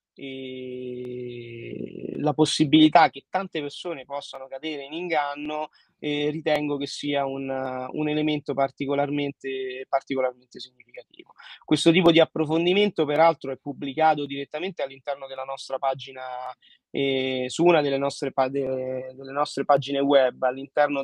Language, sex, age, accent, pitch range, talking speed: Italian, male, 20-39, native, 135-150 Hz, 115 wpm